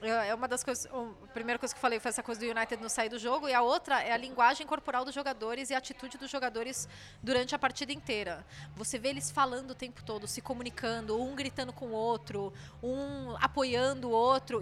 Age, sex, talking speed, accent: 20-39, female, 225 wpm, Brazilian